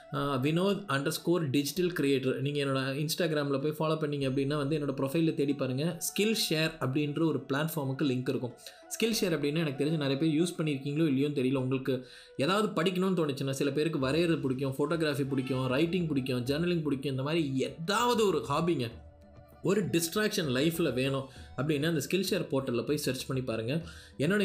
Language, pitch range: Tamil, 130-165 Hz